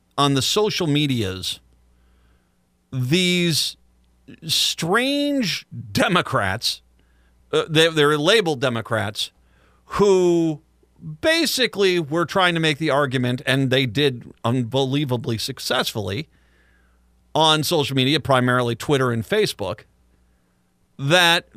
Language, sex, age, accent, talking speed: English, male, 50-69, American, 90 wpm